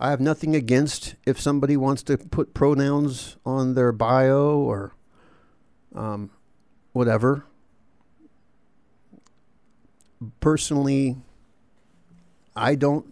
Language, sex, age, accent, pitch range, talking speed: English, male, 50-69, American, 110-140 Hz, 85 wpm